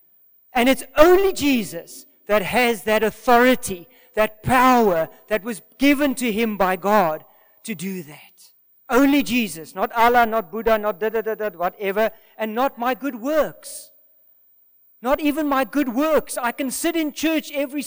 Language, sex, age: English, male, 40-59